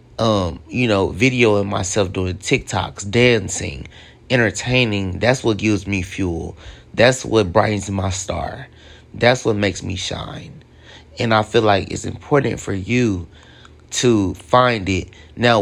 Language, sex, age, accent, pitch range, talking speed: English, male, 30-49, American, 95-120 Hz, 140 wpm